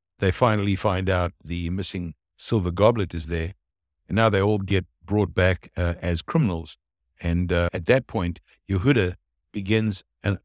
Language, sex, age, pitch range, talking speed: English, male, 60-79, 90-115 Hz, 160 wpm